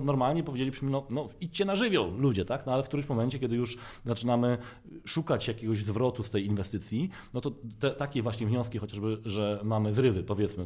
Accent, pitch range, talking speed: native, 105-135 Hz, 190 wpm